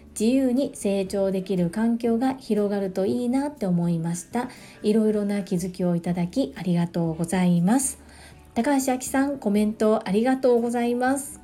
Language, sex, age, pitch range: Japanese, female, 40-59, 180-245 Hz